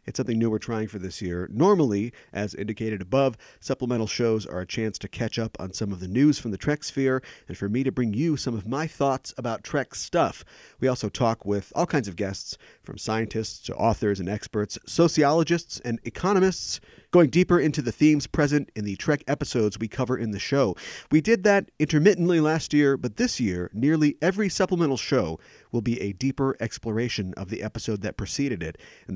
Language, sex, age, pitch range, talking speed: English, male, 40-59, 110-150 Hz, 205 wpm